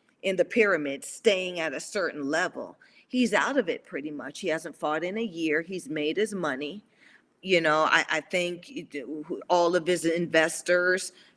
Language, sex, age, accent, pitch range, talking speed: English, female, 40-59, American, 165-255 Hz, 175 wpm